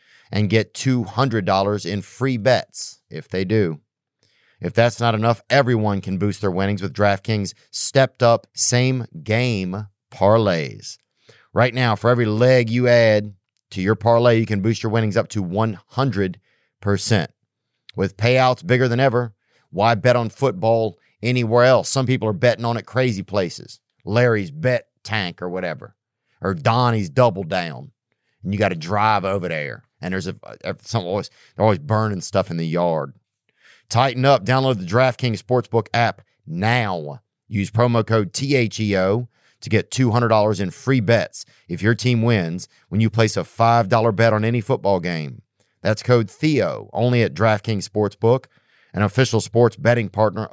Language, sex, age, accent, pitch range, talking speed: English, male, 40-59, American, 105-125 Hz, 155 wpm